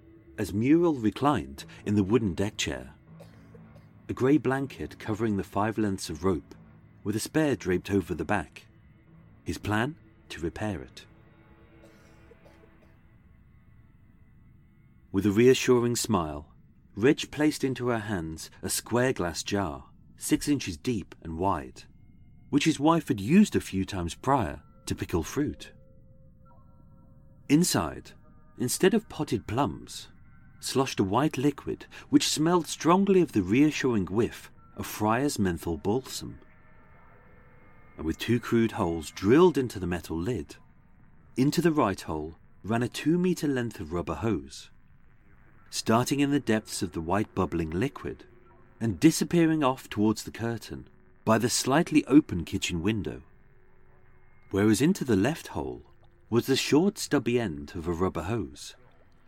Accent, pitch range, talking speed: British, 95-135 Hz, 135 wpm